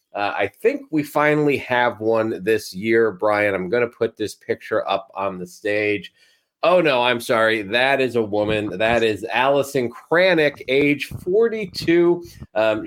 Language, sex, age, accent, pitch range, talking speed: English, male, 30-49, American, 105-145 Hz, 165 wpm